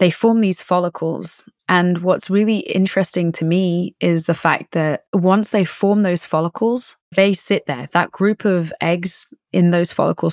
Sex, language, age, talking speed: female, English, 20-39, 170 wpm